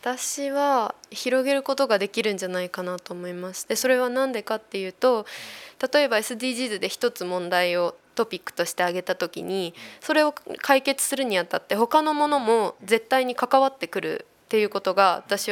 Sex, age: female, 20-39